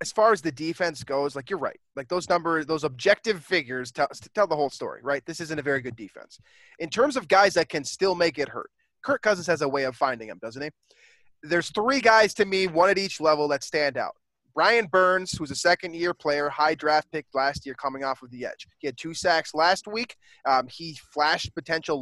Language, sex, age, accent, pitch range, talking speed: English, male, 20-39, American, 140-175 Hz, 235 wpm